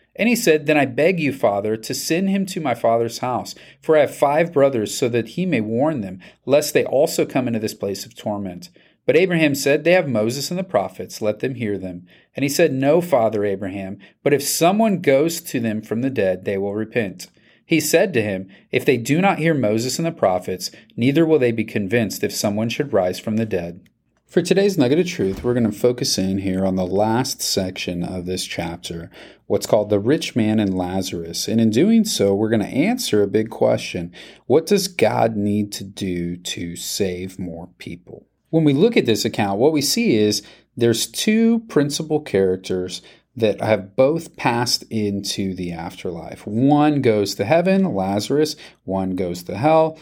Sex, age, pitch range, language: male, 40-59, 100-145 Hz, English